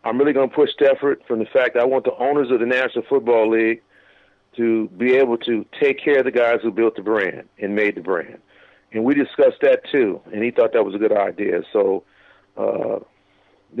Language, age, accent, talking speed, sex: English, 50-69, American, 225 wpm, male